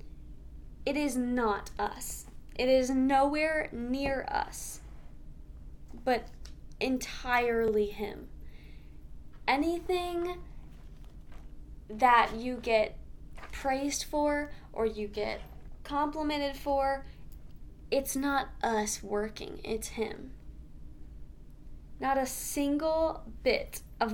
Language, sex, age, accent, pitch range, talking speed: English, female, 20-39, American, 220-275 Hz, 85 wpm